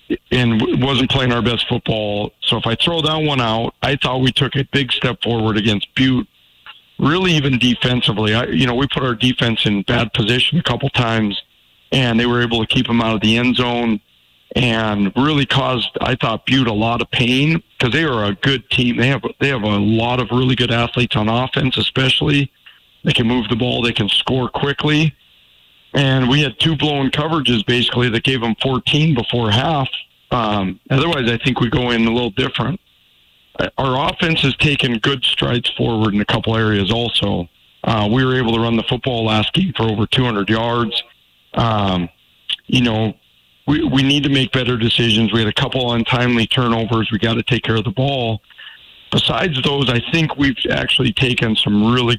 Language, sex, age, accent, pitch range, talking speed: English, male, 40-59, American, 110-130 Hz, 195 wpm